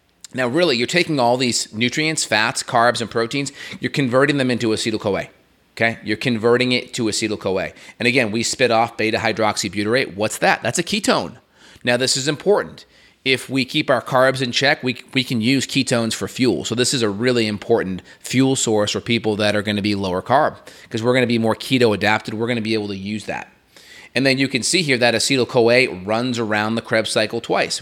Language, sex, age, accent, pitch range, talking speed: English, male, 30-49, American, 110-130 Hz, 200 wpm